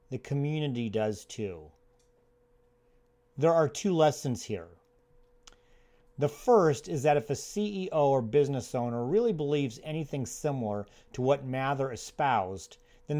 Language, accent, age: English, American, 40-59